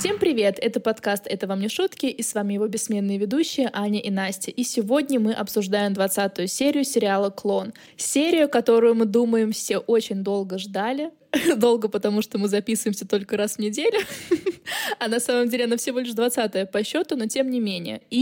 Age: 20-39